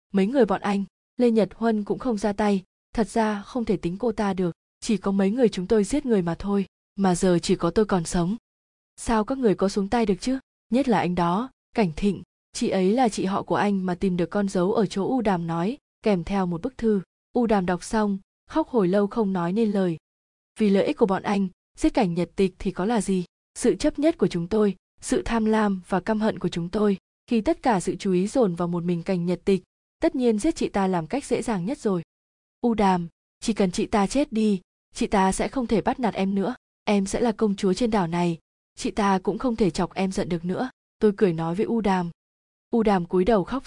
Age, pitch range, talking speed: 20-39, 185-225 Hz, 250 wpm